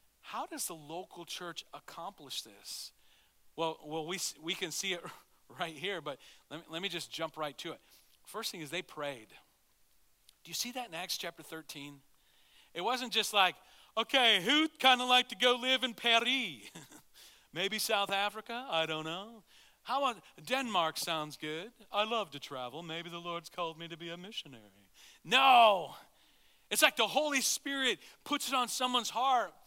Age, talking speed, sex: 40-59, 180 wpm, male